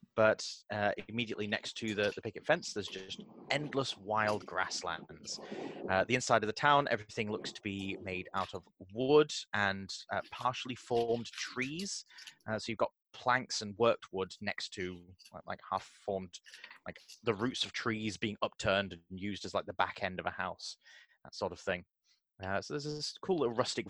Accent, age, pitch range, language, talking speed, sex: British, 20-39, 95-120 Hz, English, 190 wpm, male